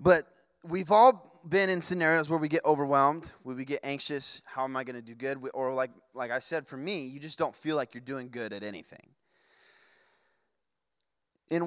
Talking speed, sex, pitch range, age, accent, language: 200 wpm, male, 125-170 Hz, 20-39, American, English